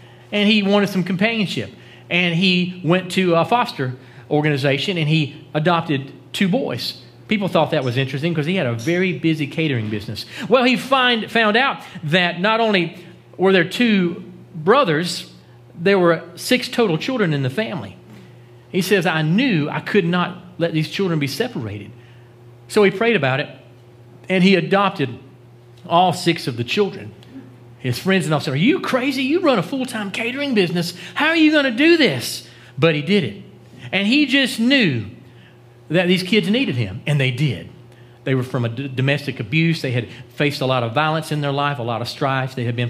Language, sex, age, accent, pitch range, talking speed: English, male, 40-59, American, 125-195 Hz, 185 wpm